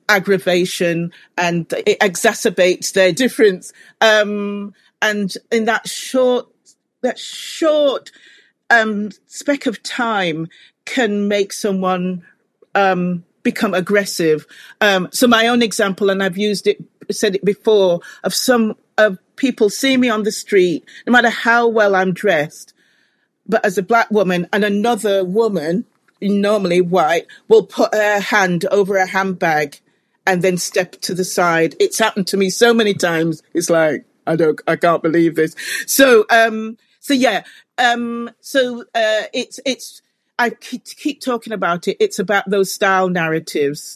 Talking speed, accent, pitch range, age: 145 wpm, British, 175-220 Hz, 40-59